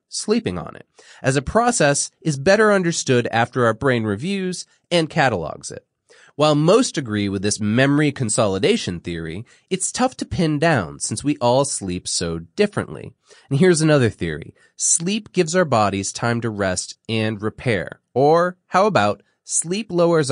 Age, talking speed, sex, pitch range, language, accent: 30-49, 155 wpm, male, 105-175 Hz, English, American